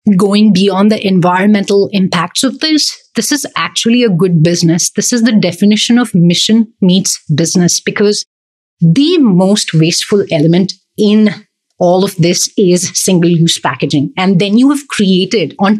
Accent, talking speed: Indian, 150 wpm